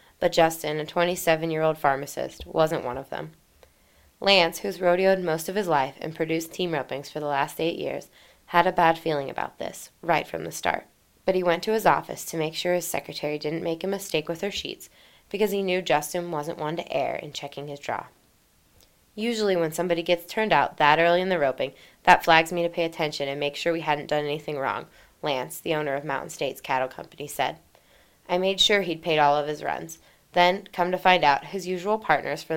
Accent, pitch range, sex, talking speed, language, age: American, 150-175 Hz, female, 215 wpm, English, 20-39